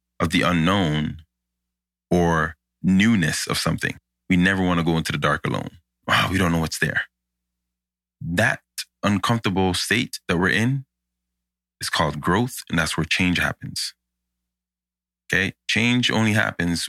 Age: 30-49